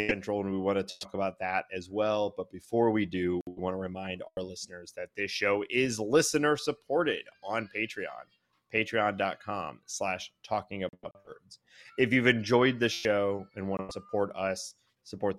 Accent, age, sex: American, 30-49, male